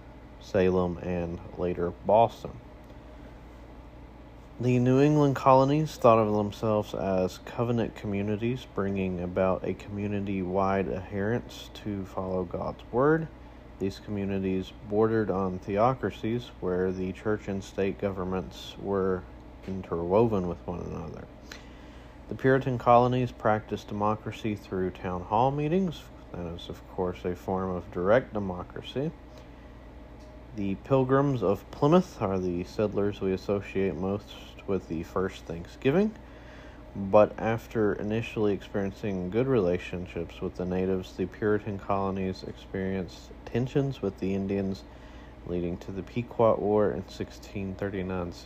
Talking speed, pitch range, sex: 120 wpm, 90-105 Hz, male